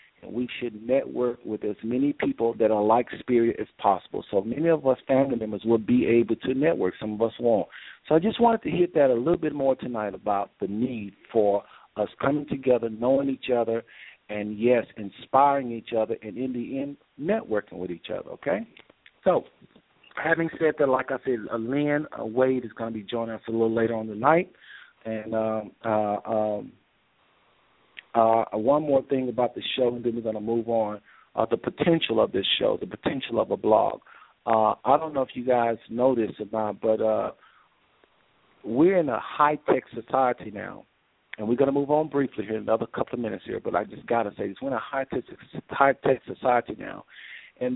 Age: 50-69